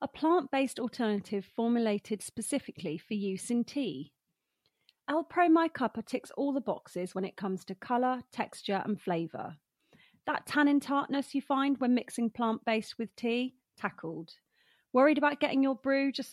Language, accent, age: English, British, 30-49